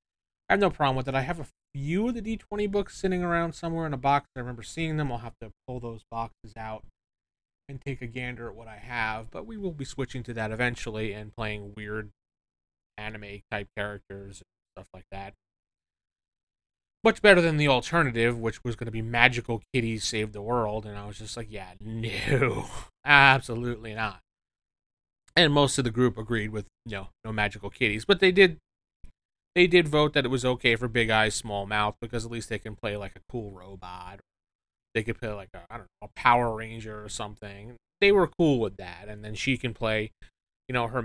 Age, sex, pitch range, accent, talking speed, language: 20-39, male, 105-130 Hz, American, 210 wpm, English